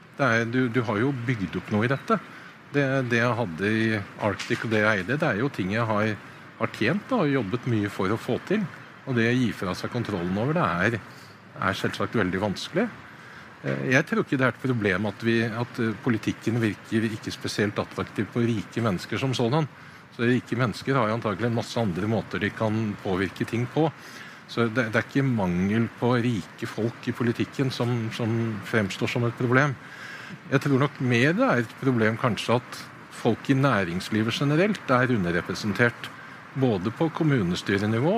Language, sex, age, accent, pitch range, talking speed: English, male, 50-69, Norwegian, 110-135 Hz, 190 wpm